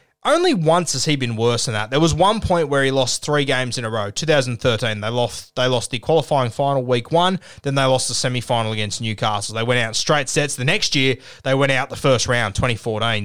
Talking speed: 235 wpm